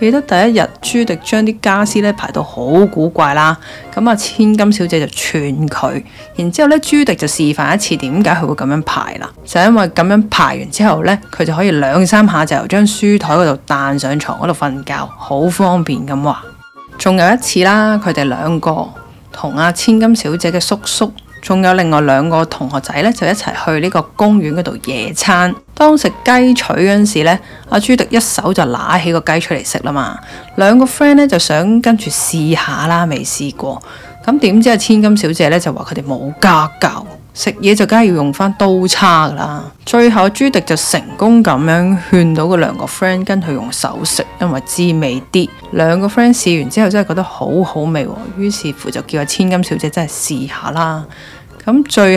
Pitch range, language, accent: 155-210 Hz, Chinese, native